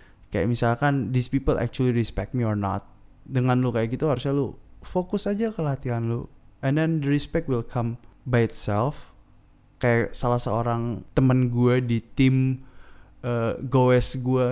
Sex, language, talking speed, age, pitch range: male, Indonesian, 155 wpm, 20-39, 110-145 Hz